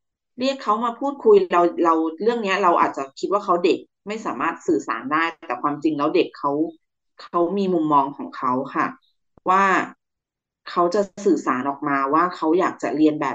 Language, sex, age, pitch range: Thai, female, 20-39, 155-225 Hz